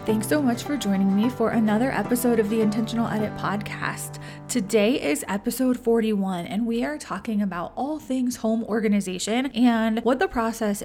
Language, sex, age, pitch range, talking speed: English, female, 20-39, 205-245 Hz, 170 wpm